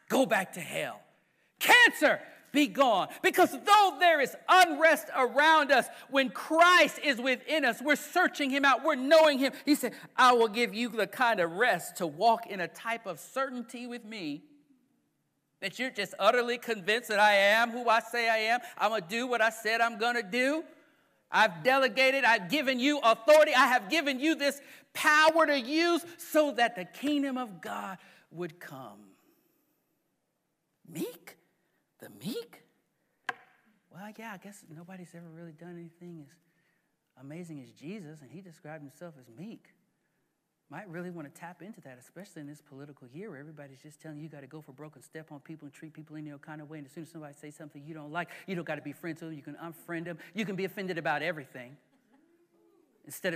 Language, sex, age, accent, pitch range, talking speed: English, male, 50-69, American, 165-275 Hz, 200 wpm